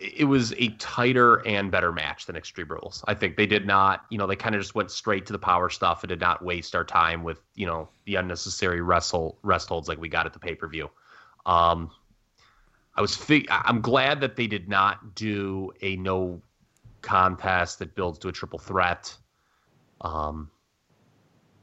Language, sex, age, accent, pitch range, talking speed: English, male, 30-49, American, 90-110 Hz, 185 wpm